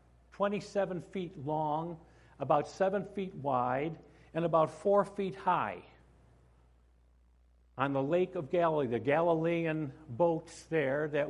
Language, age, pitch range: English, 50-69, 130-200 Hz